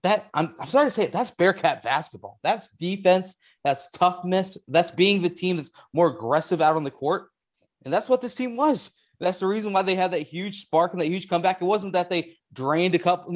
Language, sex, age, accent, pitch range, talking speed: English, male, 30-49, American, 145-185 Hz, 230 wpm